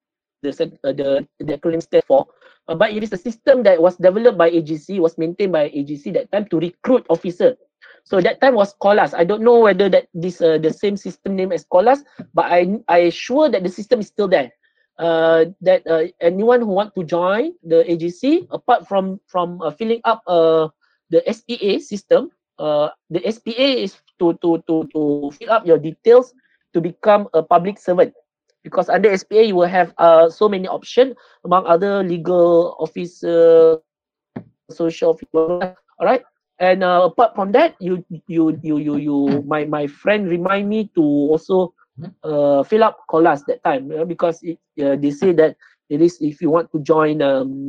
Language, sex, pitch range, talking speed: English, male, 160-210 Hz, 190 wpm